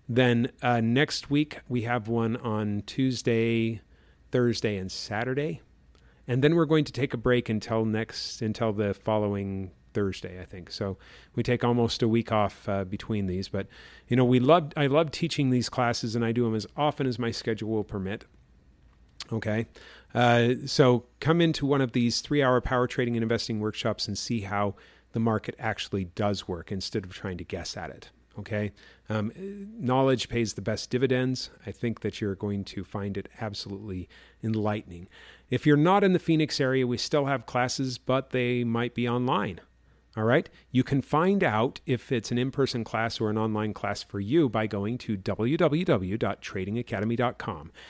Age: 40-59